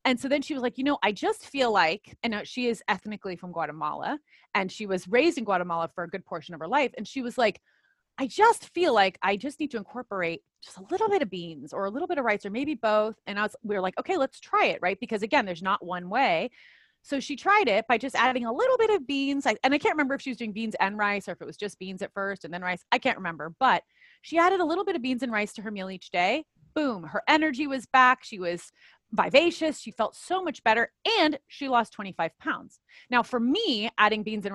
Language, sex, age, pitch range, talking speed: English, female, 30-49, 195-275 Hz, 260 wpm